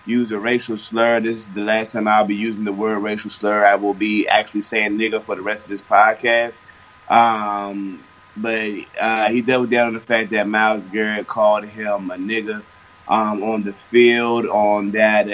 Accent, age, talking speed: American, 20-39, 195 wpm